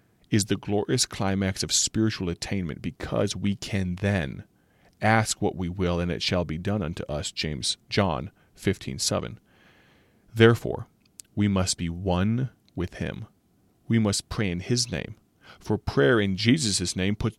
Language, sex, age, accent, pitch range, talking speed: English, male, 30-49, American, 90-115 Hz, 150 wpm